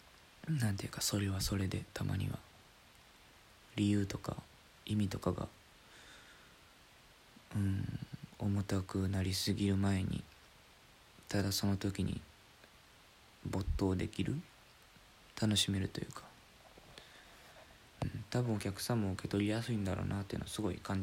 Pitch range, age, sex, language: 95-115 Hz, 20-39, male, Japanese